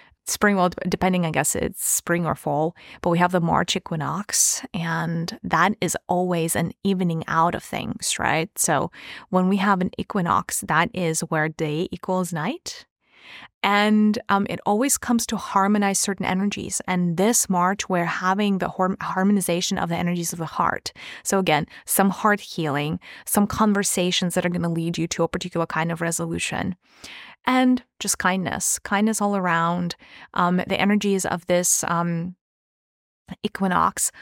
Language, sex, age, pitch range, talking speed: English, female, 20-39, 175-205 Hz, 160 wpm